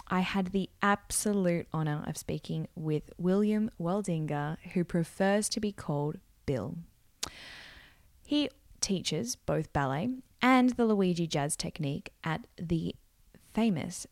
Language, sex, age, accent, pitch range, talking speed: English, female, 10-29, Australian, 155-200 Hz, 120 wpm